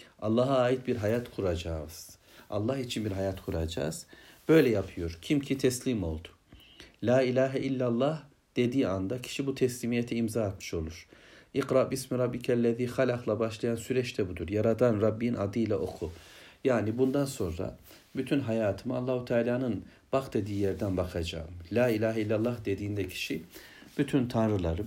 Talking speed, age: 140 wpm, 60-79